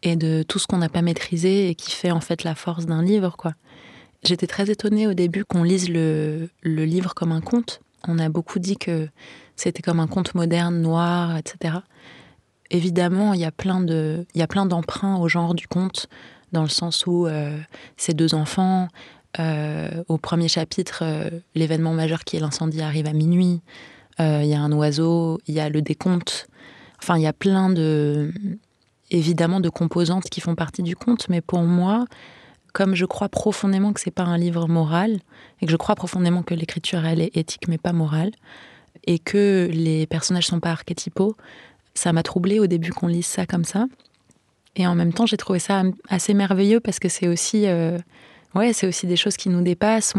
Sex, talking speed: female, 200 wpm